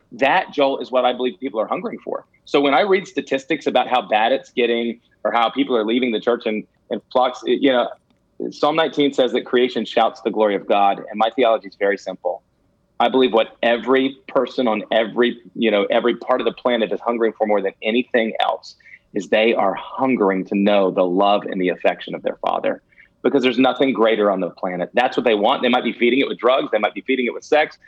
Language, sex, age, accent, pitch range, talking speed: English, male, 30-49, American, 105-130 Hz, 230 wpm